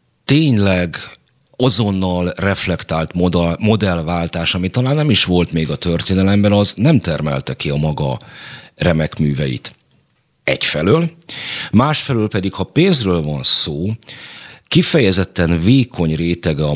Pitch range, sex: 80-105 Hz, male